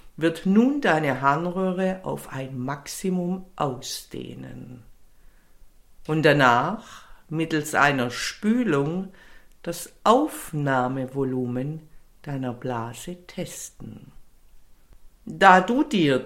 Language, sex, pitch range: German, female, 130-185 Hz